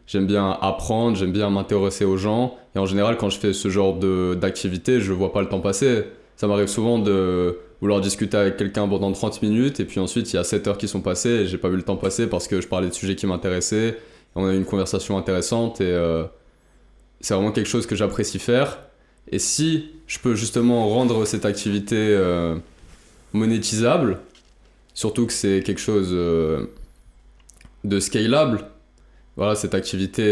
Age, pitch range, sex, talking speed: 20-39, 95-105 Hz, male, 190 wpm